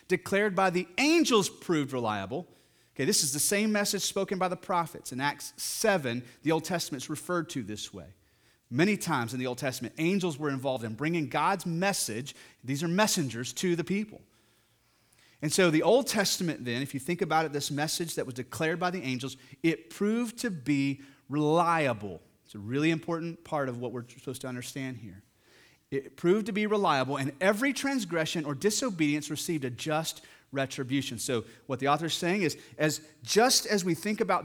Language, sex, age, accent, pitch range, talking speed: English, male, 30-49, American, 135-200 Hz, 190 wpm